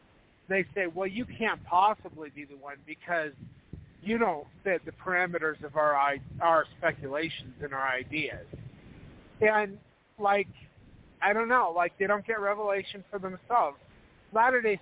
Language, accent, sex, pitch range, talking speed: English, American, male, 150-185 Hz, 145 wpm